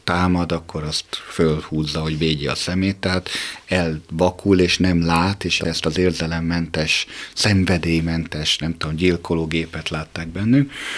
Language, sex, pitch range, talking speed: Hungarian, male, 80-105 Hz, 125 wpm